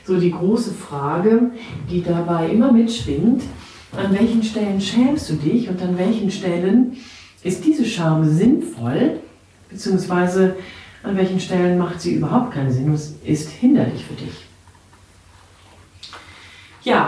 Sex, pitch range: female, 160-225 Hz